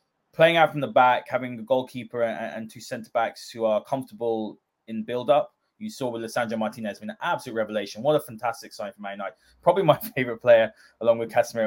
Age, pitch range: 20-39, 110-140 Hz